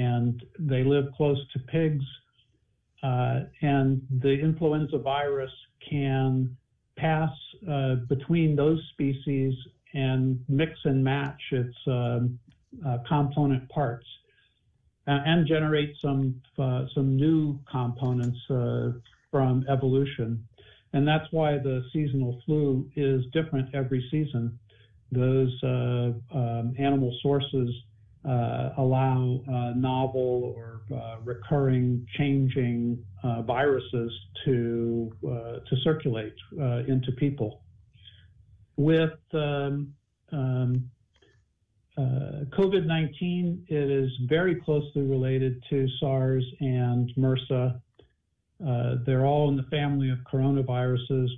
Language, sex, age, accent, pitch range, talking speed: English, male, 50-69, American, 125-140 Hz, 105 wpm